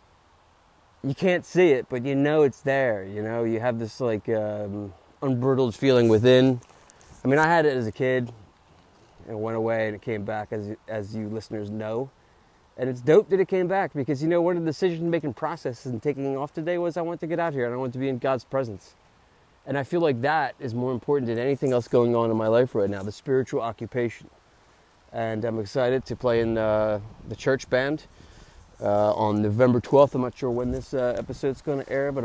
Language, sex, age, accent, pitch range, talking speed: English, male, 20-39, American, 115-155 Hz, 220 wpm